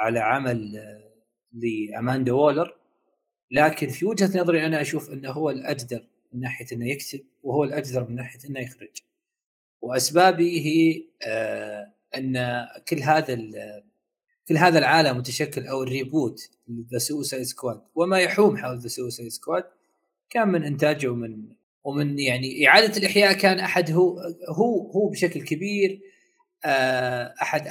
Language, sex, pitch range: Arabic, male, 125-175 Hz